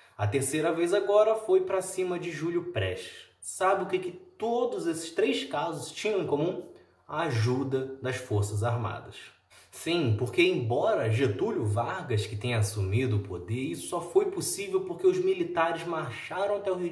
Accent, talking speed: Brazilian, 165 wpm